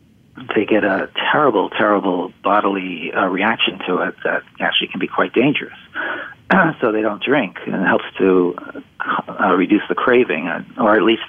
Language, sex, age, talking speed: English, male, 50-69, 170 wpm